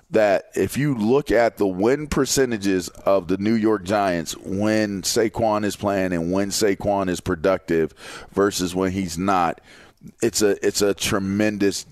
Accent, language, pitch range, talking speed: American, English, 100-125 Hz, 155 wpm